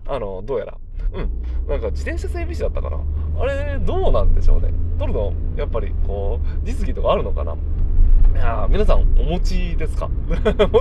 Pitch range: 80-90 Hz